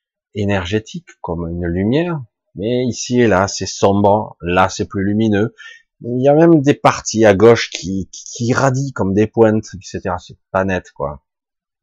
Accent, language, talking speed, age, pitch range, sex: French, French, 170 wpm, 30-49, 95-125 Hz, male